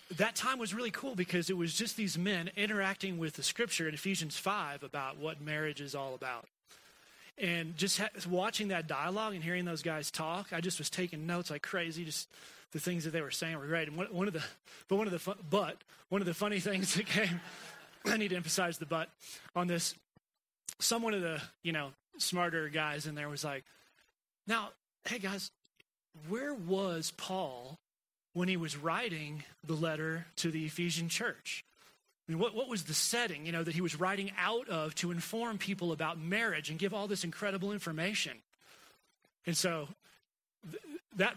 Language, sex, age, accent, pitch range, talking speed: English, male, 30-49, American, 165-205 Hz, 190 wpm